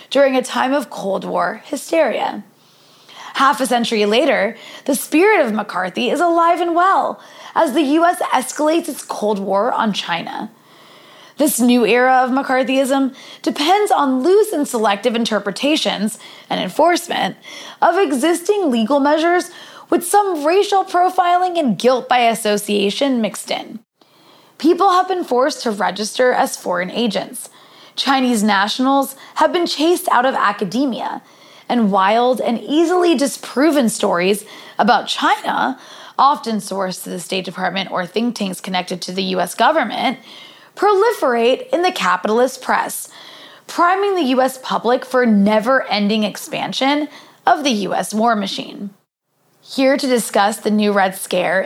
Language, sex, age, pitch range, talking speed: English, female, 20-39, 210-305 Hz, 135 wpm